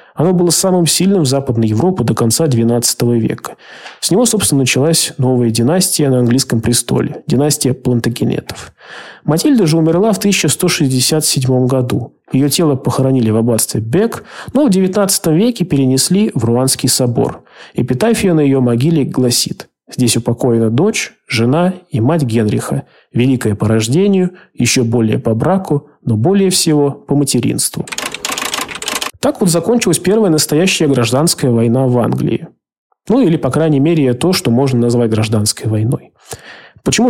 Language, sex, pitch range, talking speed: Russian, male, 120-175 Hz, 140 wpm